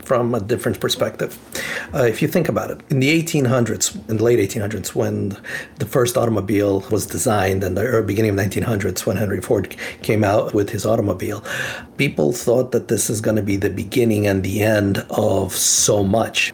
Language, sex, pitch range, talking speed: English, male, 100-120 Hz, 190 wpm